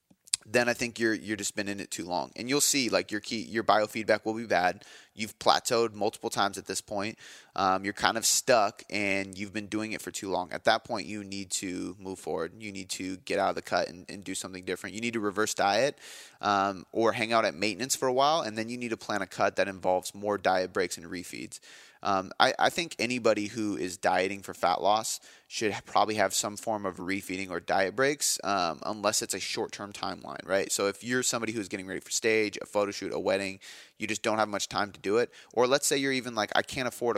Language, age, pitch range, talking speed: English, 20-39, 95-110 Hz, 245 wpm